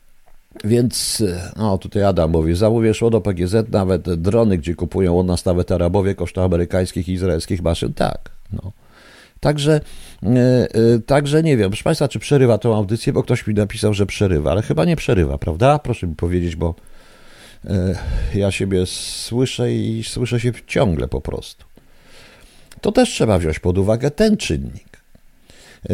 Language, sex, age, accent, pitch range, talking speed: Polish, male, 50-69, native, 90-135 Hz, 150 wpm